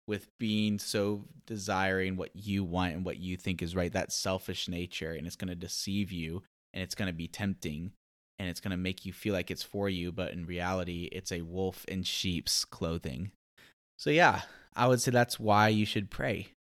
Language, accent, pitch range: English, American, 90-105 Hz